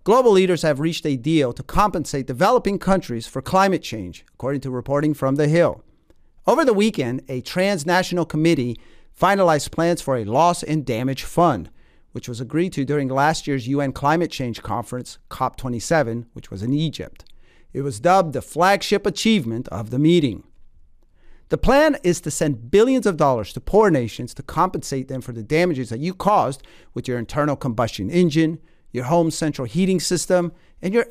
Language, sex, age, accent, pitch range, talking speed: English, male, 40-59, American, 130-175 Hz, 175 wpm